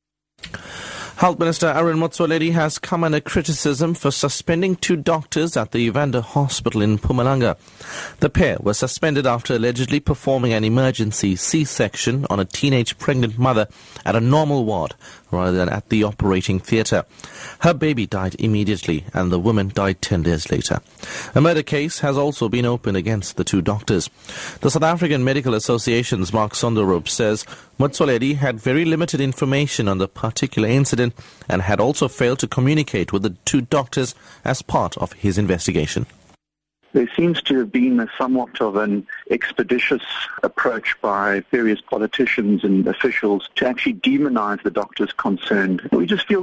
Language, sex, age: English, male, 30-49